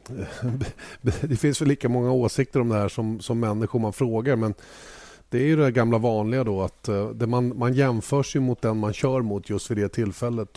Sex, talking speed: male, 210 wpm